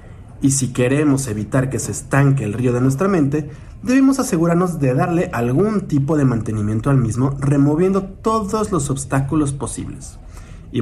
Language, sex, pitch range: Spanish, male, 115-160 Hz